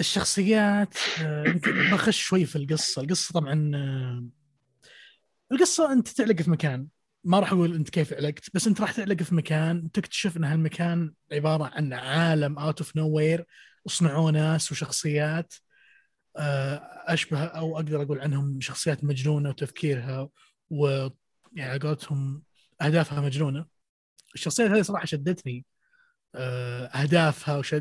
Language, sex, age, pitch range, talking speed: Arabic, male, 20-39, 145-190 Hz, 115 wpm